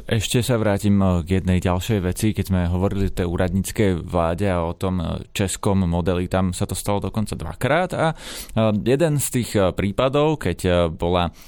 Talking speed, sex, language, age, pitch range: 165 wpm, male, Slovak, 20-39, 95-130 Hz